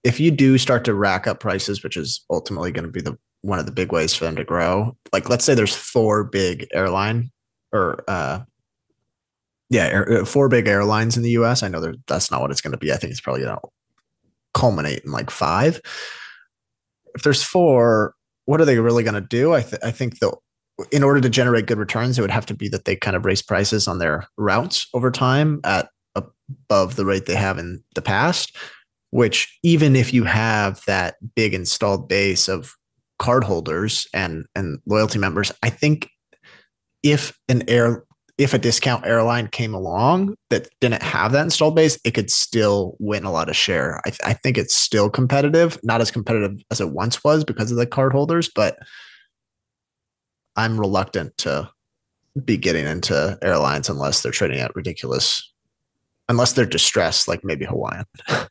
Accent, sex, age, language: American, male, 20-39, English